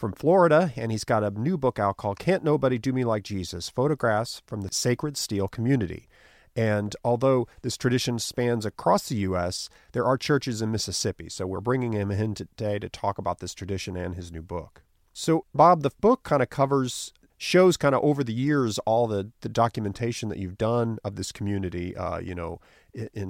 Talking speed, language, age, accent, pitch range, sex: 200 wpm, English, 40-59, American, 100-125 Hz, male